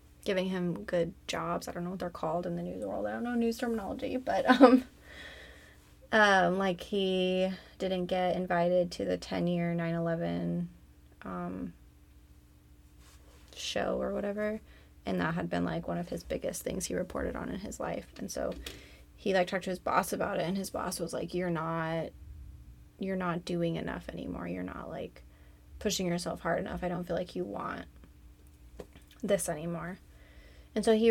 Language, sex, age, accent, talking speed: English, female, 20-39, American, 175 wpm